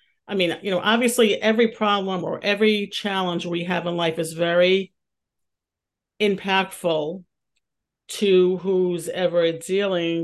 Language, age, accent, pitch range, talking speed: English, 50-69, American, 165-200 Hz, 125 wpm